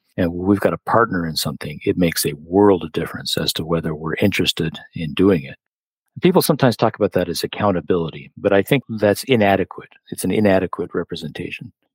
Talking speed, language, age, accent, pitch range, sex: 185 wpm, English, 50-69, American, 85-110 Hz, male